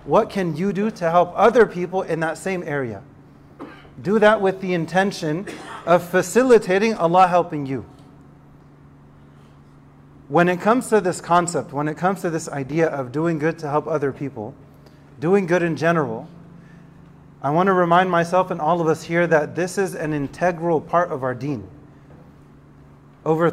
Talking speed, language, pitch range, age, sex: 165 wpm, English, 150-185 Hz, 30-49, male